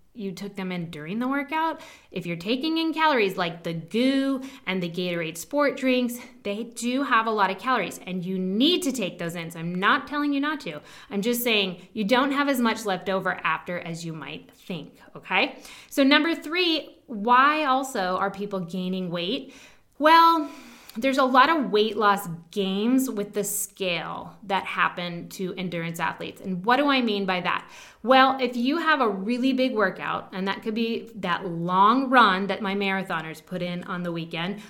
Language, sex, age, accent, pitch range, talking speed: English, female, 20-39, American, 190-260 Hz, 195 wpm